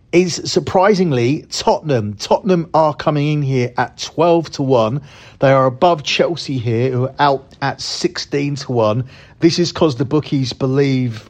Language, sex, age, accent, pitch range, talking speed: English, male, 40-59, British, 120-145 Hz, 160 wpm